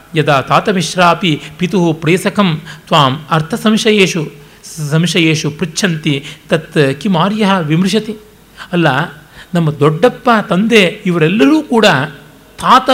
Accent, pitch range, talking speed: native, 140-180 Hz, 95 wpm